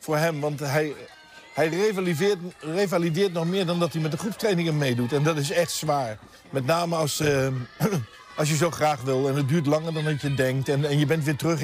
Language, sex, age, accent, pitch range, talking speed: Dutch, male, 50-69, Dutch, 130-160 Hz, 225 wpm